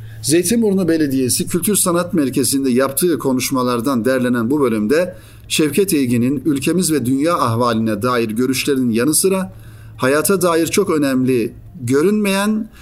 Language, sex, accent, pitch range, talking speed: Turkish, male, native, 115-165 Hz, 115 wpm